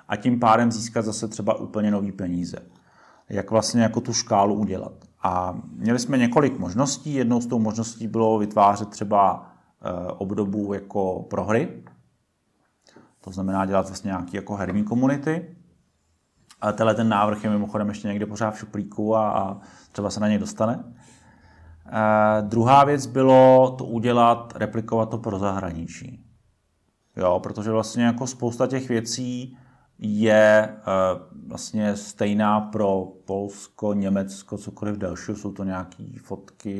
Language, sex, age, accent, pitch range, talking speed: Czech, male, 30-49, native, 95-115 Hz, 140 wpm